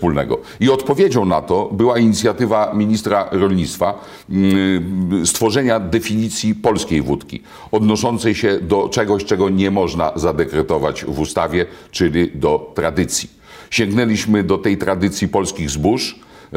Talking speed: 110 wpm